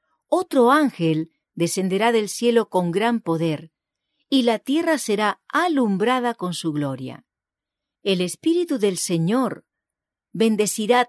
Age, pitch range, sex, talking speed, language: 50-69, 170-245 Hz, female, 115 wpm, English